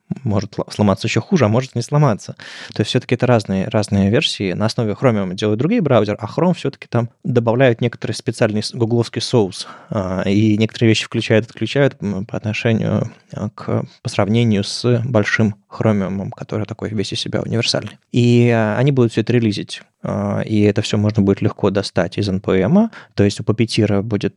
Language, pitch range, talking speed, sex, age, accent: Russian, 100-120 Hz, 170 wpm, male, 20-39, native